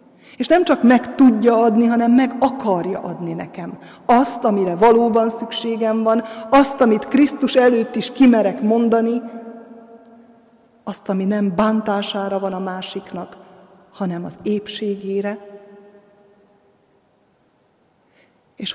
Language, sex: Hungarian, female